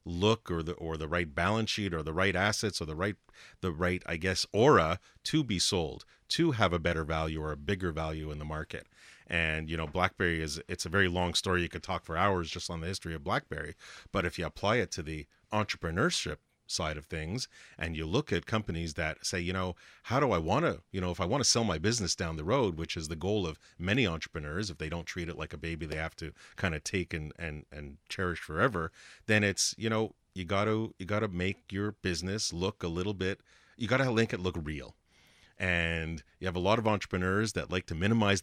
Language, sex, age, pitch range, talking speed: English, male, 40-59, 85-105 Hz, 235 wpm